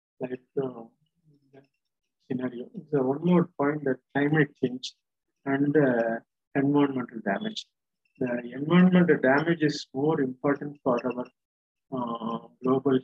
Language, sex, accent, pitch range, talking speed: Tamil, male, native, 130-150 Hz, 120 wpm